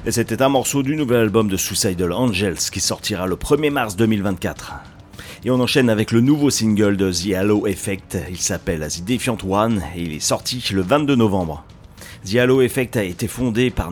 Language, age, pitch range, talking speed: French, 40-59, 95-125 Hz, 200 wpm